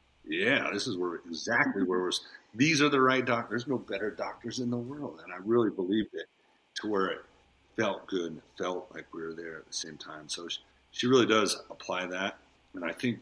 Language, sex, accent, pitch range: English, male, American, 70-100 Hz